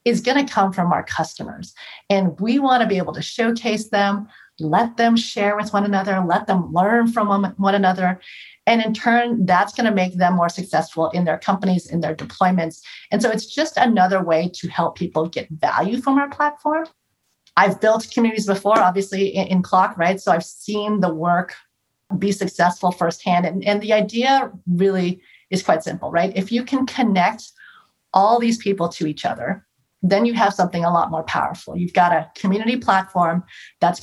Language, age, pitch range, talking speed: English, 40-59, 175-220 Hz, 185 wpm